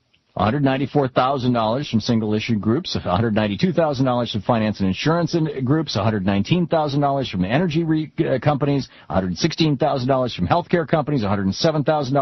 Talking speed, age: 100 wpm, 50-69